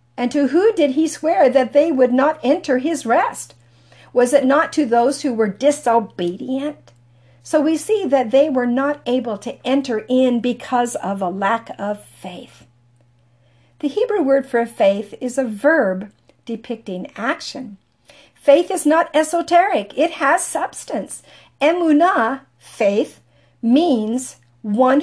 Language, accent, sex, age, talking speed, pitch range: English, American, female, 50-69, 140 wpm, 200-290 Hz